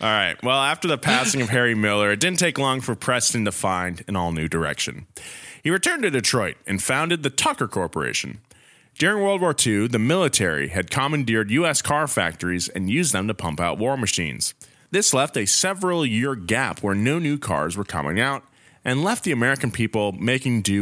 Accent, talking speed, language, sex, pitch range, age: American, 195 wpm, English, male, 100-140 Hz, 30-49